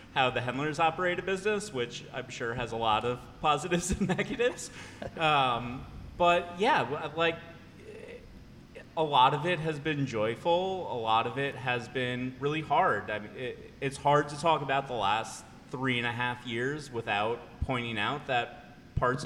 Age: 30-49